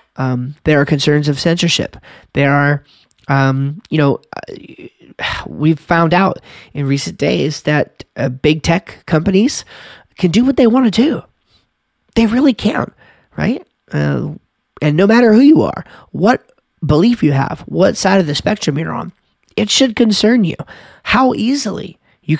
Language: English